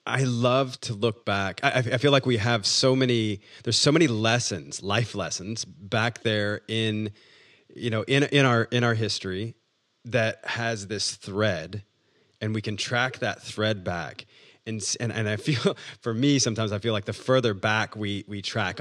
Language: English